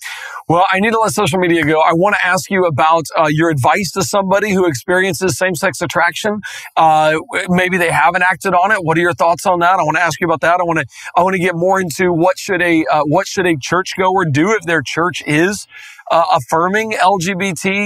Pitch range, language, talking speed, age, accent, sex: 160-190 Hz, English, 230 wpm, 40-59, American, male